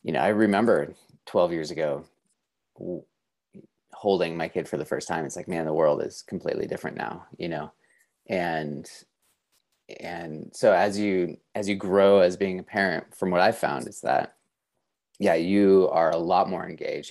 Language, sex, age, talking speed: English, male, 30-49, 175 wpm